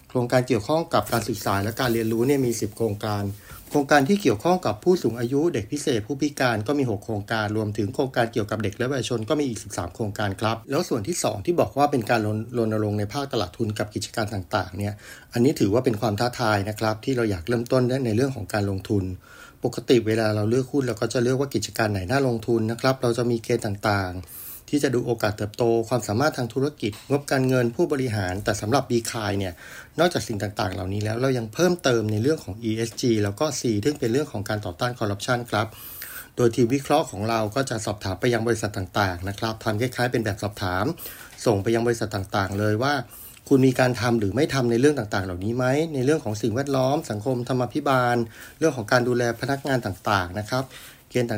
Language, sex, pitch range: Thai, male, 105-130 Hz